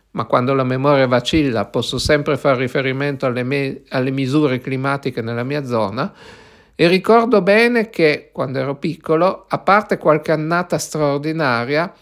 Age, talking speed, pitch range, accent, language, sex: 50-69, 140 wpm, 140-175 Hz, native, Italian, male